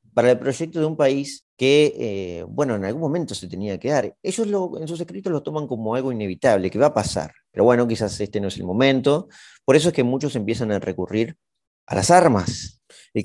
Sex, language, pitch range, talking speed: male, Spanish, 100-135 Hz, 225 wpm